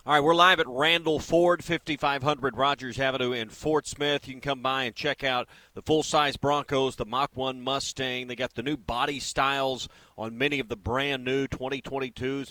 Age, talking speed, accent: 40-59, 185 wpm, American